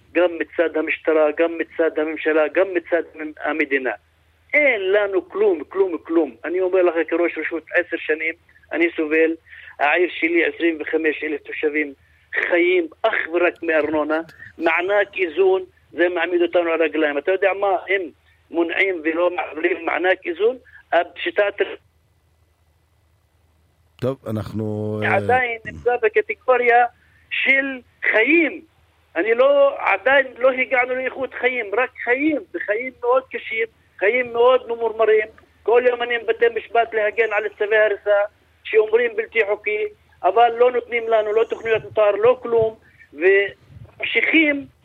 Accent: Lebanese